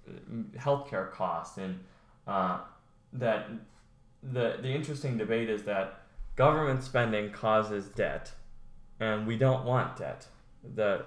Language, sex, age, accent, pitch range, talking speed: English, male, 10-29, American, 95-125 Hz, 115 wpm